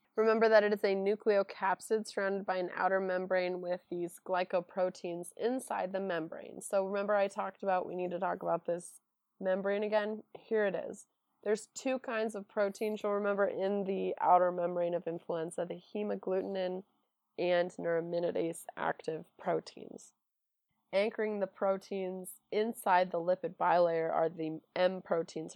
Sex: female